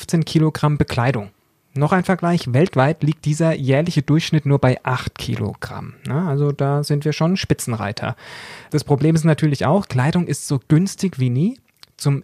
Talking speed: 165 wpm